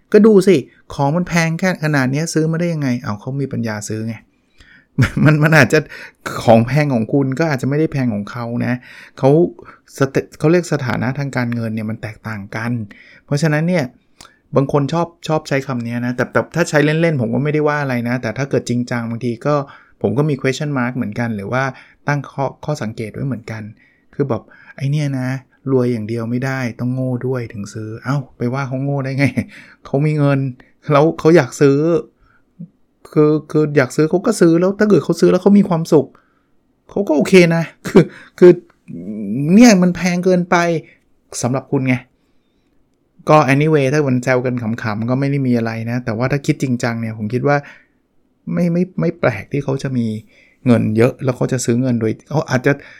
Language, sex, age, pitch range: Thai, male, 20-39, 120-155 Hz